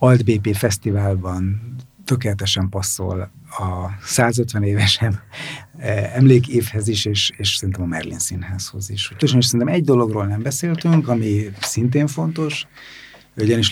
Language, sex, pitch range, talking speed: Hungarian, male, 95-120 Hz, 120 wpm